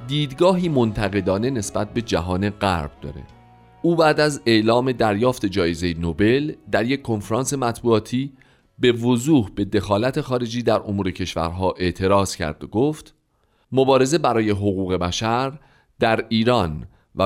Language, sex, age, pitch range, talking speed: Persian, male, 40-59, 95-130 Hz, 130 wpm